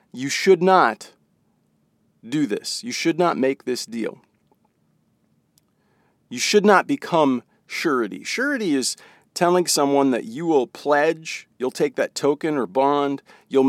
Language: English